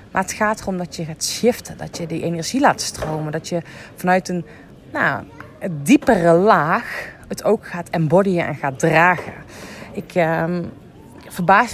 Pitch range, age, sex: 165-210 Hz, 30-49, female